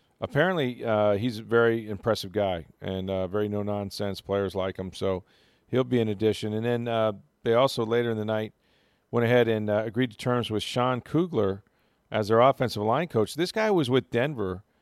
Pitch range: 100-120 Hz